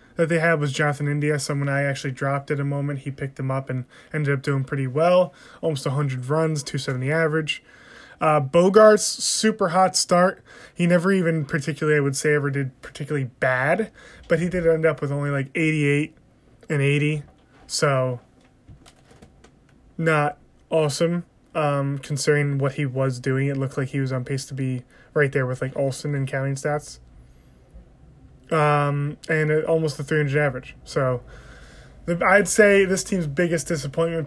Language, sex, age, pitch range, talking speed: English, male, 20-39, 135-160 Hz, 170 wpm